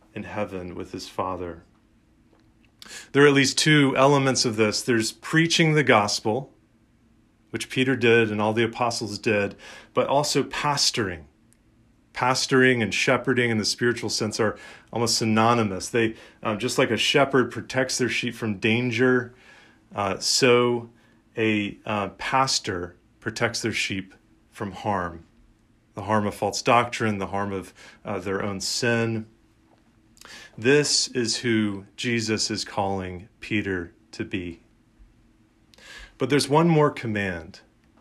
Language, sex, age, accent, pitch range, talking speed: English, male, 30-49, American, 110-130 Hz, 135 wpm